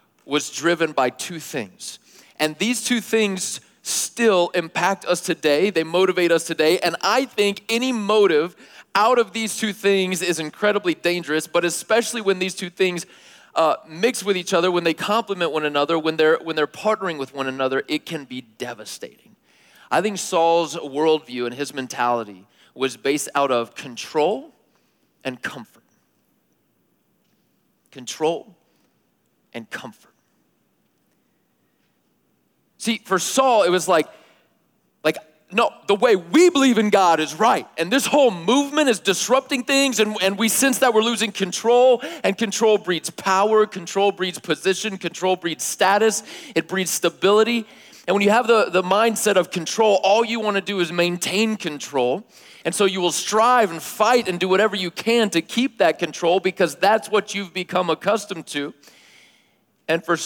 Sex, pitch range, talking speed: male, 165-220 Hz, 160 wpm